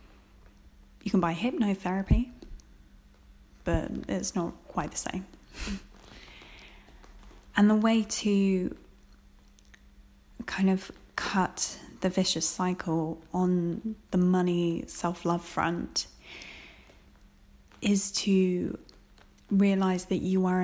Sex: female